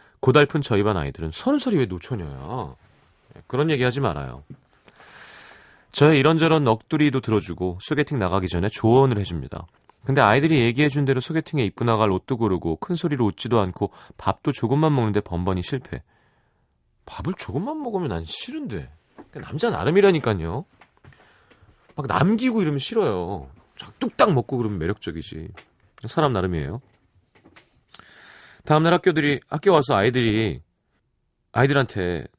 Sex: male